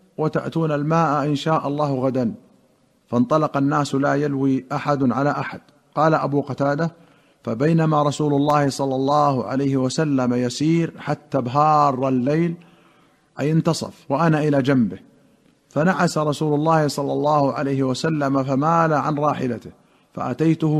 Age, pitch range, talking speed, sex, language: 50-69, 135-160 Hz, 125 wpm, male, Arabic